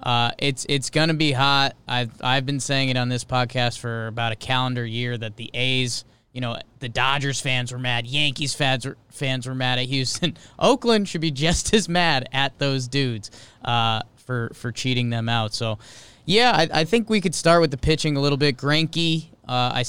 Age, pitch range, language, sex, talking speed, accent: 20-39, 120-150 Hz, English, male, 210 wpm, American